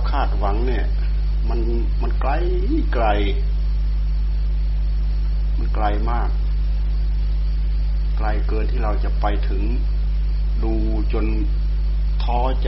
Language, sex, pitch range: Thai, male, 75-110 Hz